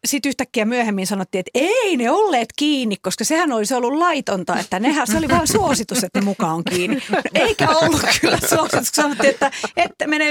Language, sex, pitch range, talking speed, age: Finnish, female, 190-265 Hz, 200 wpm, 40-59